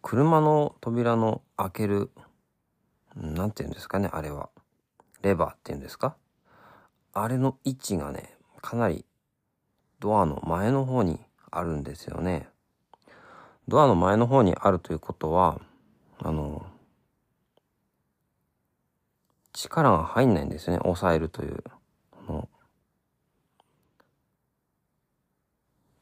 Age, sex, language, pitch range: 40-59, male, Japanese, 85-115 Hz